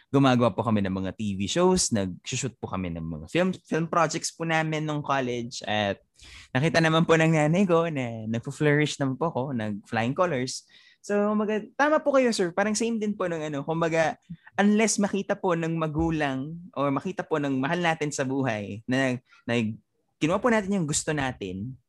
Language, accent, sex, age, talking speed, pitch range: Filipino, native, male, 20-39, 180 wpm, 115-165 Hz